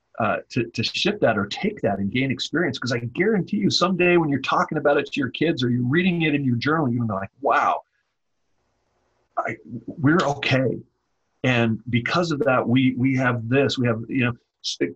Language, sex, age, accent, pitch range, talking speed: English, male, 40-59, American, 115-145 Hz, 195 wpm